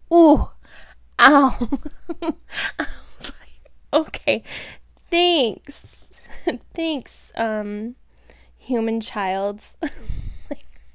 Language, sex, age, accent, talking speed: English, female, 10-29, American, 65 wpm